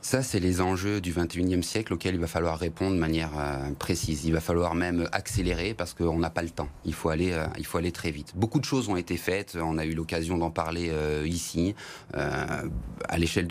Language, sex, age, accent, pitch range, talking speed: French, male, 30-49, French, 85-100 Hz, 235 wpm